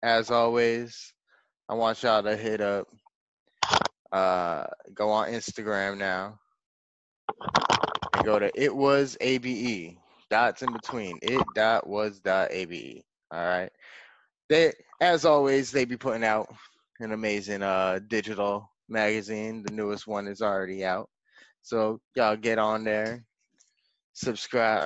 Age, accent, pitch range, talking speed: 20-39, American, 100-125 Hz, 130 wpm